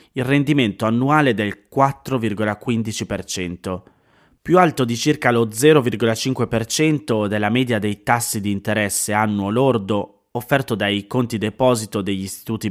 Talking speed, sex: 120 wpm, male